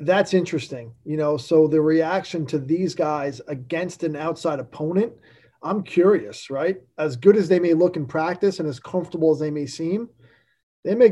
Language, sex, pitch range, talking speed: English, male, 160-195 Hz, 185 wpm